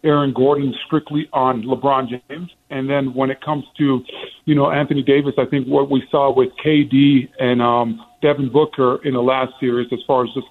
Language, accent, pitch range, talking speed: English, American, 130-150 Hz, 200 wpm